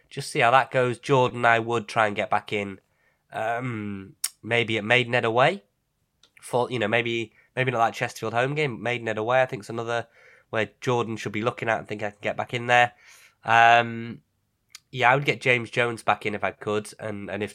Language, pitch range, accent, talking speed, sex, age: English, 110-135 Hz, British, 210 wpm, male, 20-39